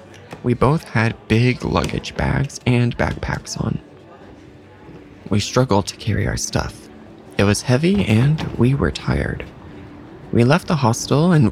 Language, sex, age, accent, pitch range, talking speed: English, male, 20-39, American, 110-155 Hz, 140 wpm